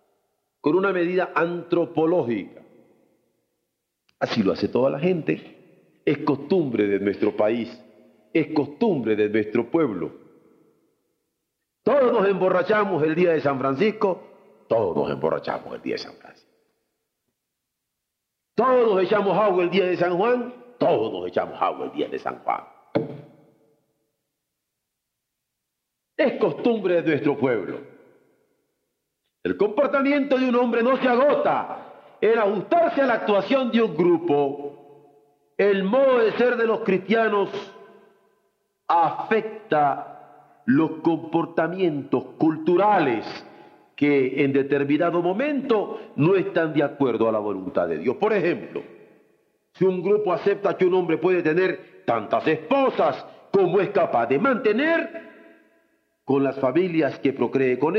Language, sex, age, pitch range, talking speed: Spanish, male, 50-69, 155-240 Hz, 125 wpm